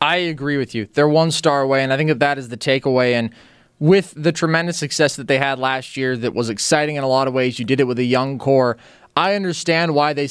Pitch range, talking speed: 135-170 Hz, 260 wpm